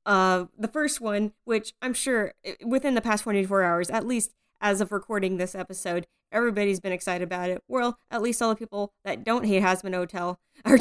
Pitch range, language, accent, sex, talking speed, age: 185-235 Hz, English, American, female, 200 wpm, 20-39